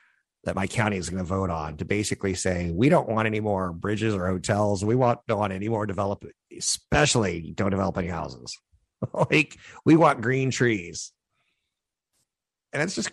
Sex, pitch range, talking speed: male, 90-110 Hz, 180 wpm